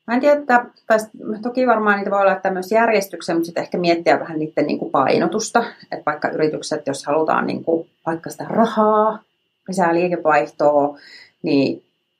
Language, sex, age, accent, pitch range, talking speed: Finnish, female, 30-49, native, 155-190 Hz, 150 wpm